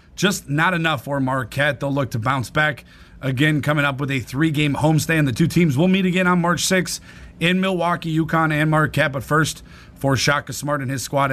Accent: American